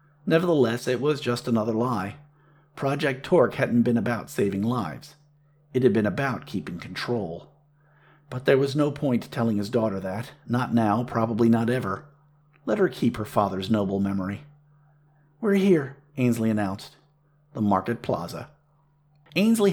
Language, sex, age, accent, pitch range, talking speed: English, male, 50-69, American, 115-150 Hz, 145 wpm